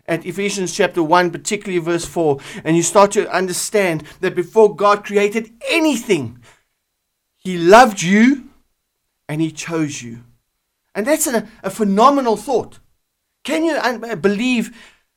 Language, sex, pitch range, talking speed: English, male, 160-210 Hz, 130 wpm